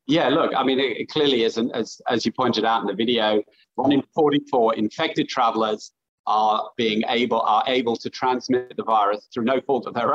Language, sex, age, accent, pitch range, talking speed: English, male, 40-59, British, 125-155 Hz, 200 wpm